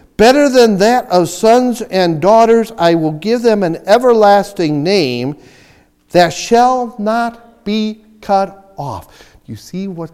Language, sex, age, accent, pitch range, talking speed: English, male, 50-69, American, 155-235 Hz, 135 wpm